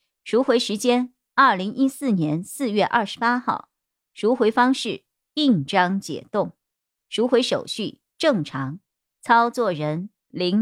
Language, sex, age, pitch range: Chinese, male, 50-69, 205-265 Hz